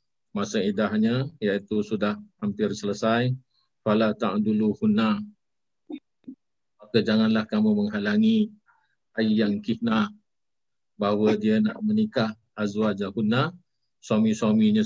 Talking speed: 90 wpm